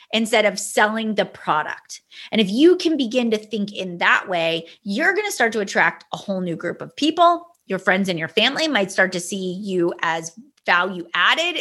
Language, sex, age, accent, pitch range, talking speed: English, female, 30-49, American, 195-265 Hz, 205 wpm